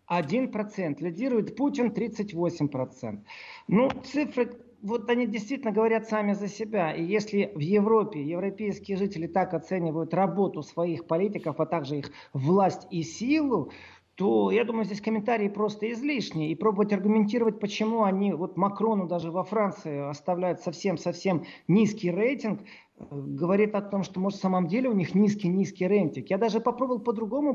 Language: Russian